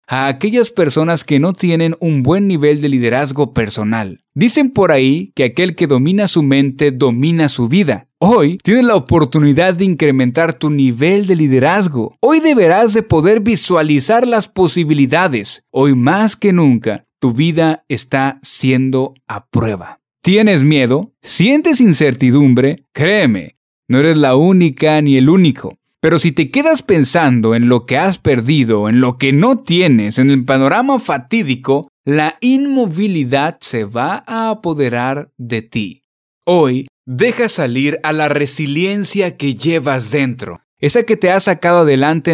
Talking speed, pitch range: 150 wpm, 135-185 Hz